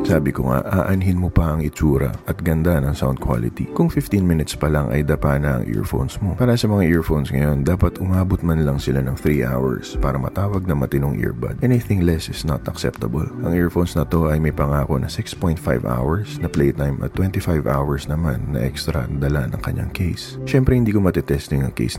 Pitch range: 70-90 Hz